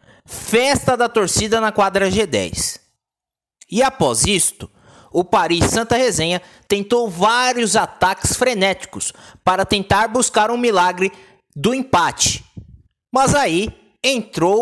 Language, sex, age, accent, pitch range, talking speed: Portuguese, male, 20-39, Brazilian, 180-240 Hz, 110 wpm